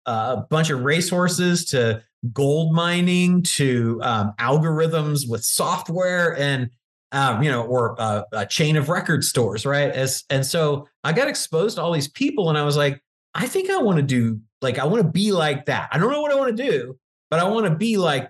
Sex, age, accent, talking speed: male, 30-49, American, 215 wpm